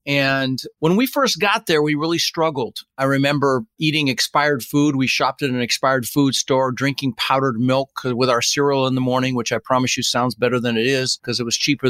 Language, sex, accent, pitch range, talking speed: English, male, American, 130-160 Hz, 215 wpm